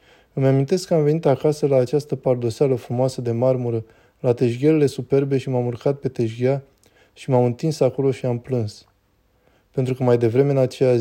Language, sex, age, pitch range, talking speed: Romanian, male, 20-39, 120-135 Hz, 180 wpm